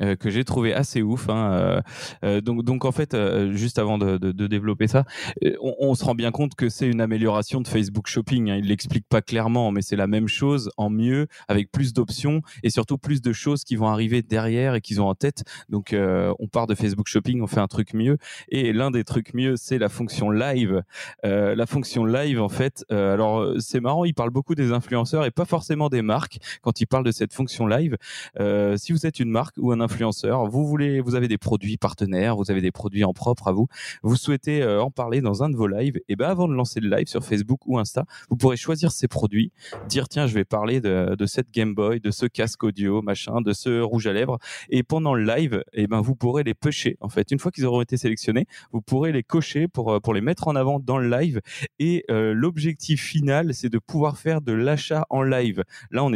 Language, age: French, 20-39